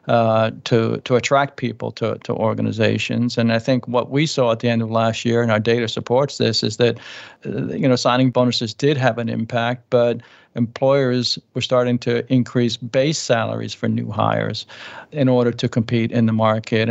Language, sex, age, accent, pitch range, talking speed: English, male, 60-79, American, 115-130 Hz, 190 wpm